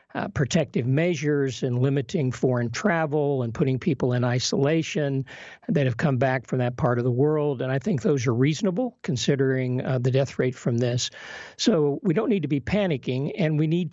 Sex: male